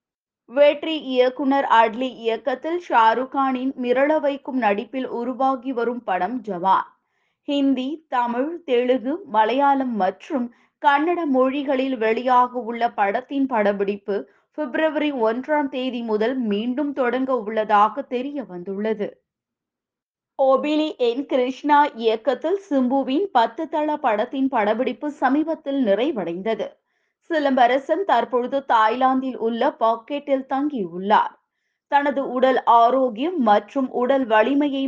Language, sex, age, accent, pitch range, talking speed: Tamil, female, 20-39, native, 225-285 Hz, 95 wpm